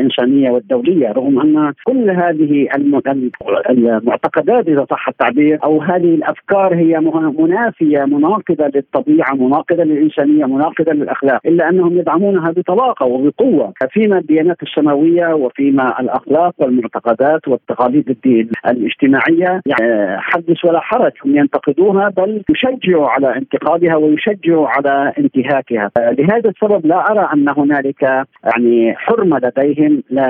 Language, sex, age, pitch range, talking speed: Arabic, male, 50-69, 135-180 Hz, 115 wpm